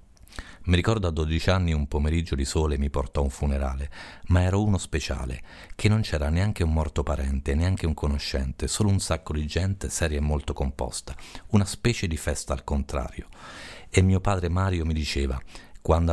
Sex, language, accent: male, Italian, native